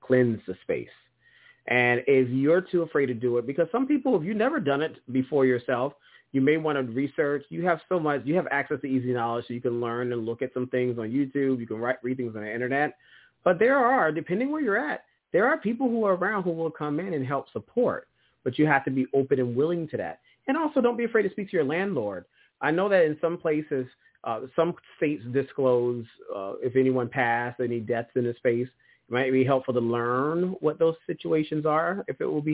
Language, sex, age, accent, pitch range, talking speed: English, male, 30-49, American, 120-150 Hz, 235 wpm